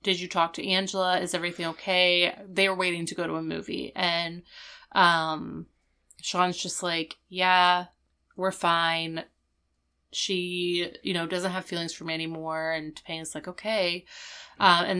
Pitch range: 175-200 Hz